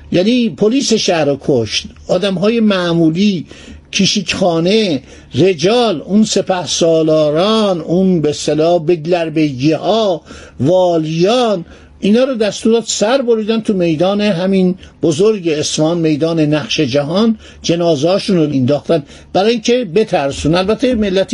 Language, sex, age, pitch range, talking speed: Persian, male, 60-79, 155-215 Hz, 110 wpm